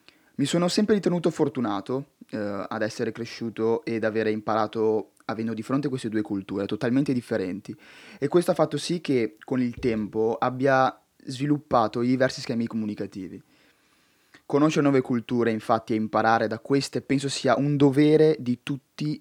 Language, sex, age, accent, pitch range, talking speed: Italian, male, 20-39, native, 115-140 Hz, 150 wpm